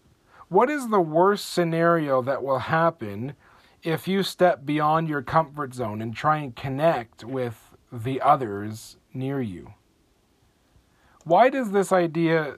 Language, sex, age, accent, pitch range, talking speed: English, male, 40-59, American, 125-170 Hz, 135 wpm